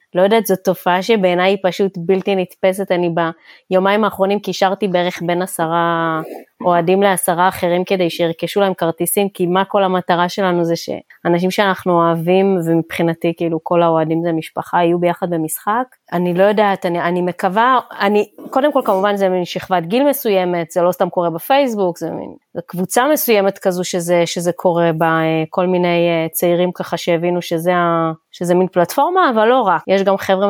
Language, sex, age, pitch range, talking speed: Hebrew, female, 20-39, 170-195 Hz, 170 wpm